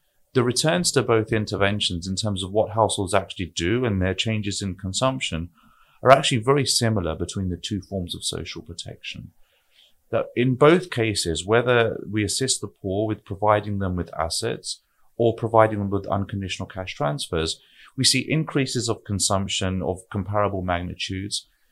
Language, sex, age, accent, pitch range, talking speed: English, male, 30-49, British, 95-115 Hz, 155 wpm